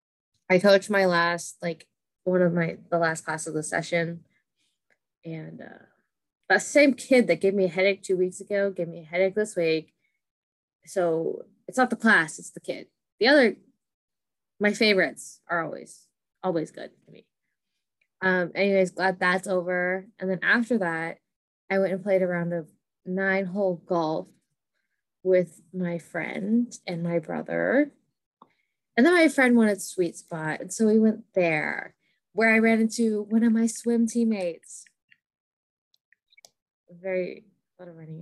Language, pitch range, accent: English, 175-220 Hz, American